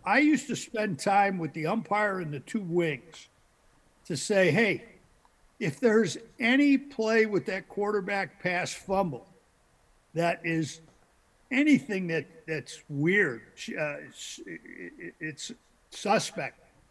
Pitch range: 165-220 Hz